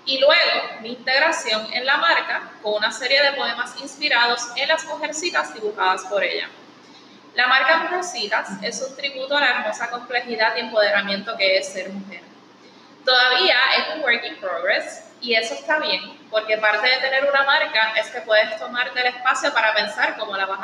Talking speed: 180 wpm